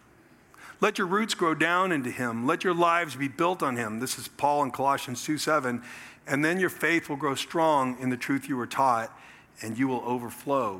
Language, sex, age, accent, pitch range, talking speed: English, male, 50-69, American, 130-170 Hz, 210 wpm